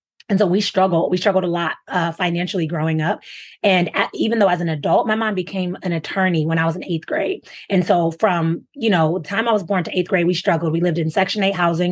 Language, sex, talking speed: English, female, 255 wpm